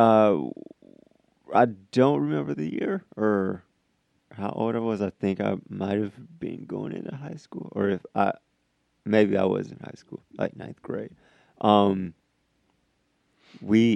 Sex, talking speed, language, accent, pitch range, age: male, 145 wpm, English, American, 95-110 Hz, 30-49